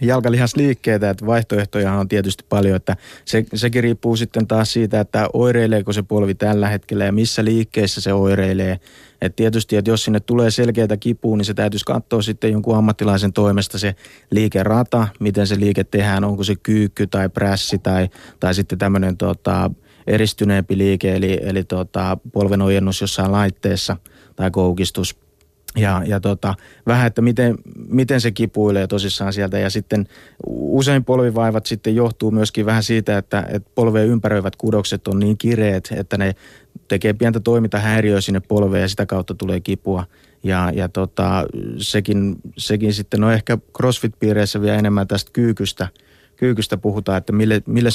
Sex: male